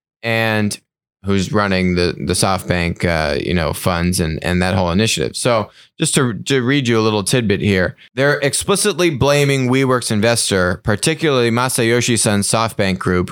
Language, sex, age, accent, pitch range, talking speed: English, male, 30-49, American, 100-140 Hz, 160 wpm